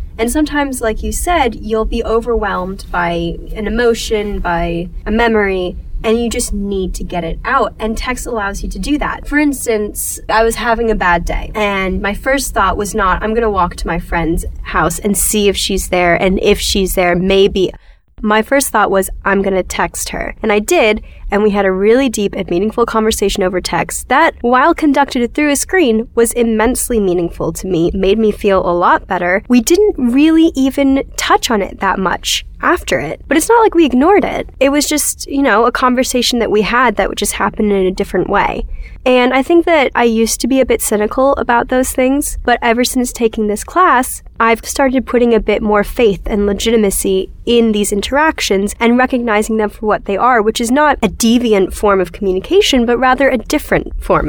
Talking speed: 210 wpm